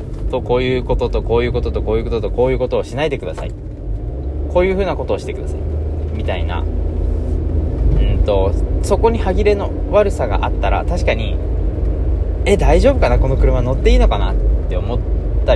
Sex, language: male, Japanese